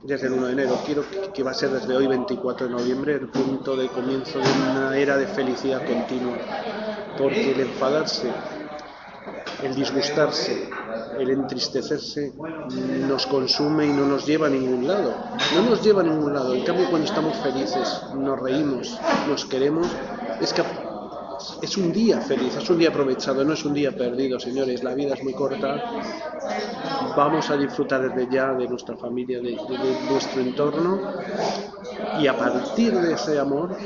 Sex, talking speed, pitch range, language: male, 170 wpm, 130-165 Hz, Spanish